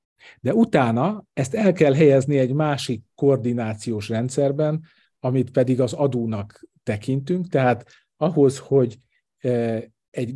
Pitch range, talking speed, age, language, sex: 120-145 Hz, 110 wpm, 50-69, Hungarian, male